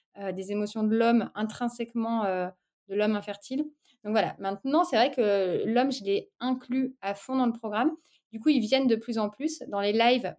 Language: French